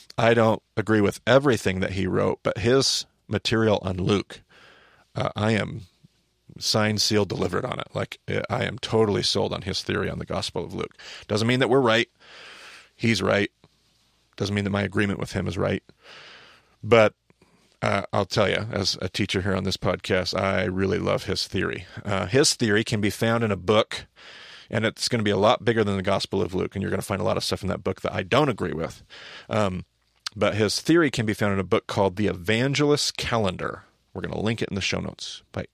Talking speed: 220 wpm